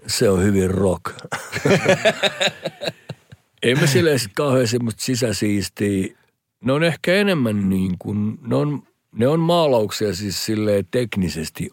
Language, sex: Finnish, male